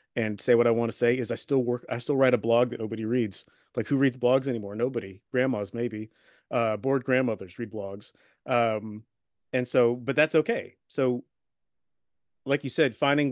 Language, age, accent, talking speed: English, 30-49, American, 195 wpm